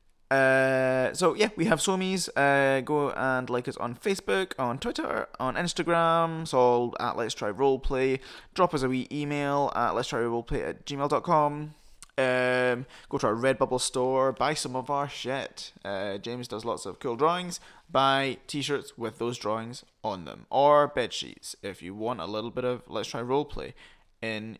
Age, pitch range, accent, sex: 20-39, 125-150 Hz, British, male